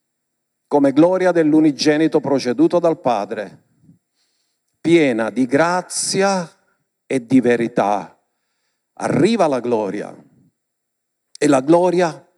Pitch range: 150-225 Hz